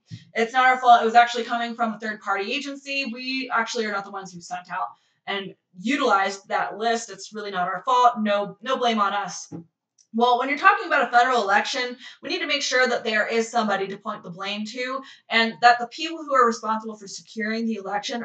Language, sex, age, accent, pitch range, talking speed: English, female, 20-39, American, 210-265 Hz, 225 wpm